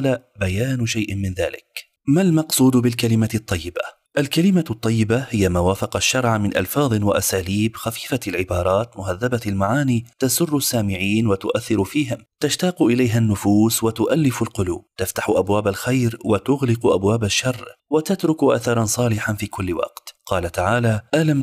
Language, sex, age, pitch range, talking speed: Arabic, male, 30-49, 100-125 Hz, 125 wpm